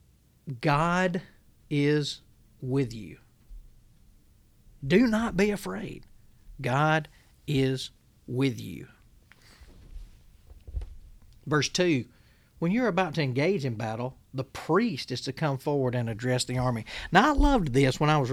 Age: 40-59